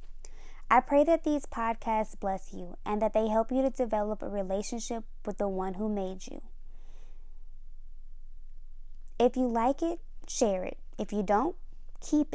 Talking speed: 155 wpm